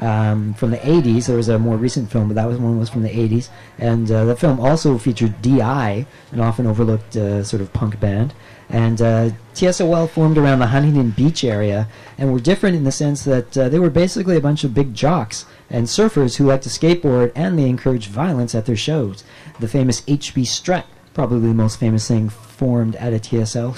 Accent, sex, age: American, male, 40-59